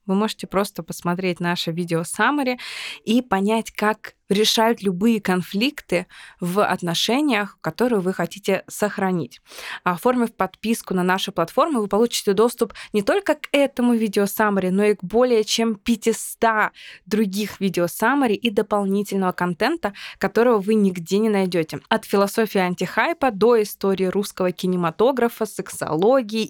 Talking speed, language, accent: 125 wpm, Russian, native